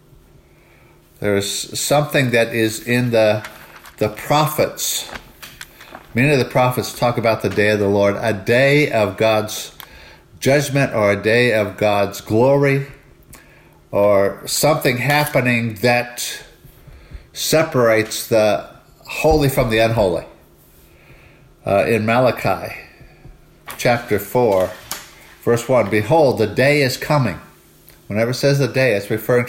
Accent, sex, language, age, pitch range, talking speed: American, male, English, 50-69, 105-140 Hz, 120 wpm